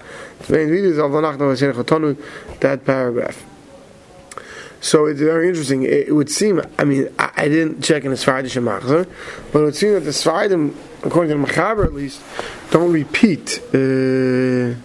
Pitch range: 140-170 Hz